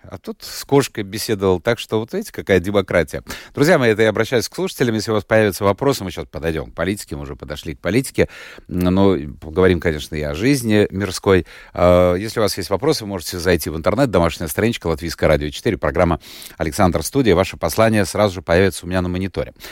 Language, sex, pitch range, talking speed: Russian, male, 85-115 Hz, 205 wpm